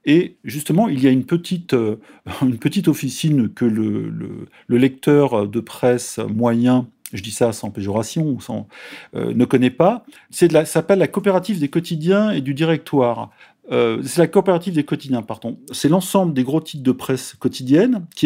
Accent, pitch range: French, 125-165 Hz